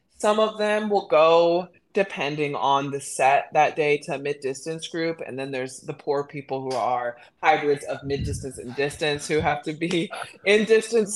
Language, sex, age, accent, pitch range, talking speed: English, female, 20-39, American, 145-180 Hz, 190 wpm